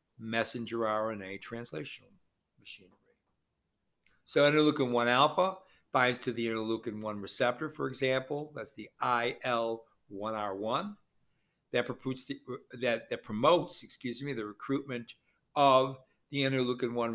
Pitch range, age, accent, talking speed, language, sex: 115-140 Hz, 60-79, American, 90 wpm, English, male